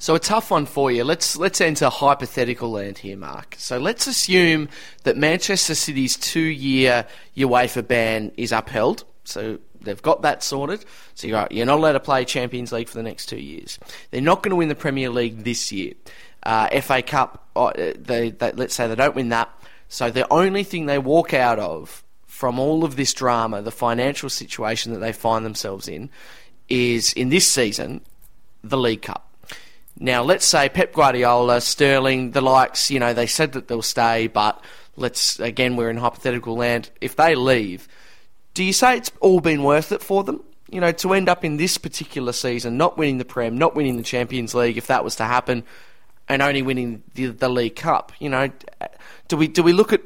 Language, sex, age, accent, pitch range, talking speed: English, male, 20-39, Australian, 120-160 Hz, 195 wpm